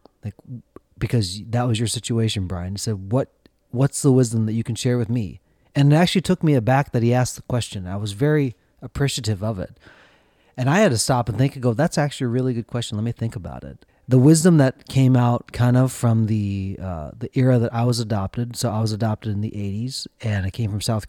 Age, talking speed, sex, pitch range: 30-49, 240 wpm, male, 105-130 Hz